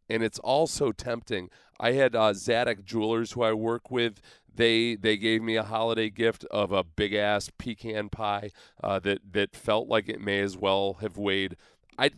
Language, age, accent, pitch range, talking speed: English, 30-49, American, 105-145 Hz, 190 wpm